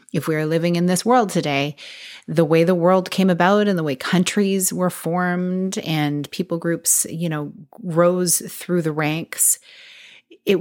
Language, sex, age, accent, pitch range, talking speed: English, female, 30-49, American, 150-180 Hz, 170 wpm